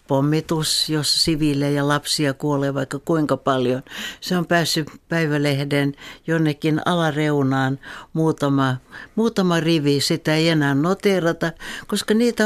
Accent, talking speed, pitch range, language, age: native, 115 wpm, 150-185 Hz, Finnish, 60-79